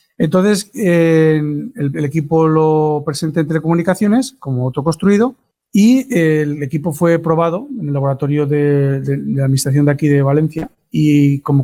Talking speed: 165 wpm